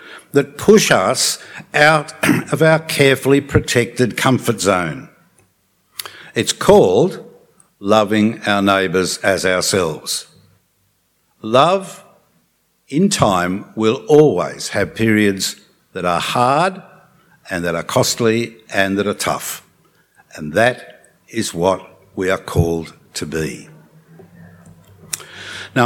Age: 60-79